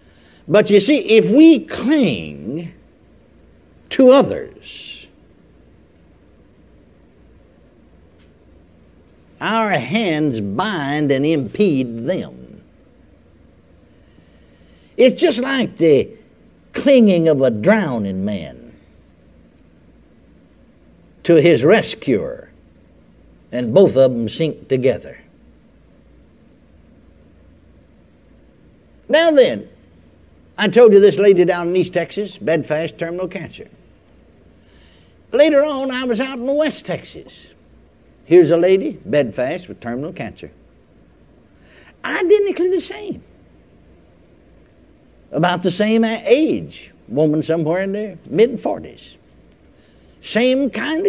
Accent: American